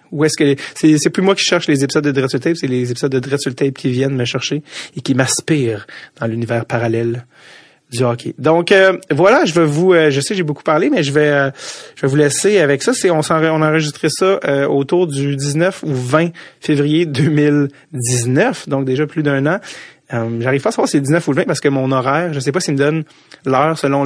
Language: French